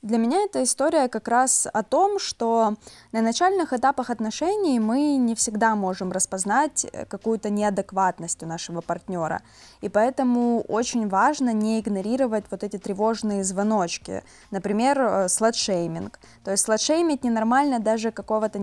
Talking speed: 130 wpm